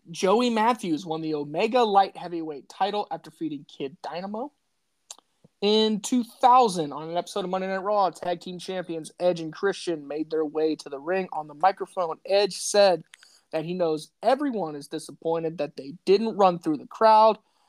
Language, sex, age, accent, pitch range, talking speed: English, male, 20-39, American, 160-210 Hz, 175 wpm